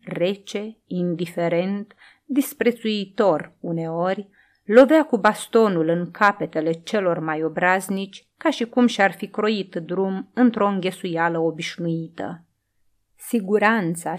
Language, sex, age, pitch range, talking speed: Romanian, female, 30-49, 175-245 Hz, 95 wpm